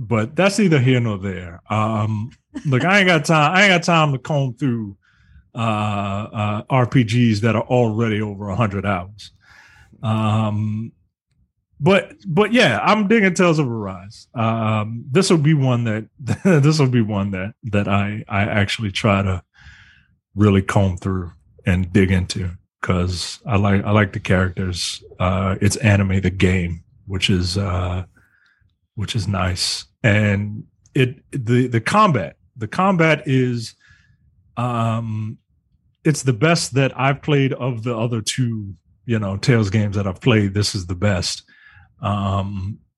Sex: male